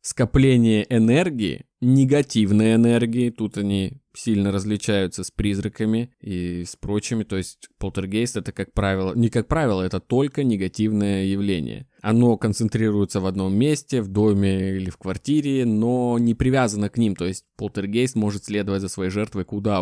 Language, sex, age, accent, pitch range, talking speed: Russian, male, 20-39, native, 95-115 Hz, 150 wpm